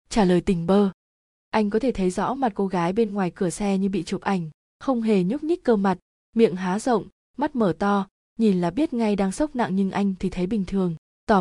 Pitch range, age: 190-230 Hz, 20-39